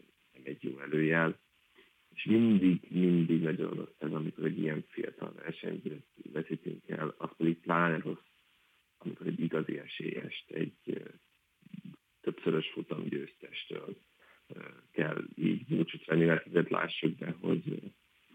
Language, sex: Hungarian, male